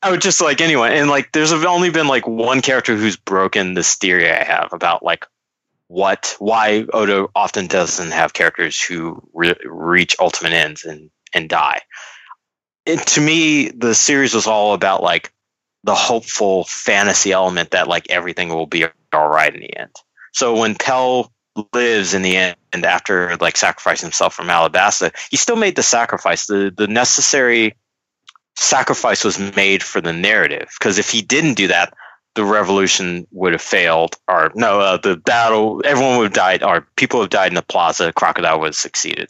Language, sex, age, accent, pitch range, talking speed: English, male, 30-49, American, 90-125 Hz, 185 wpm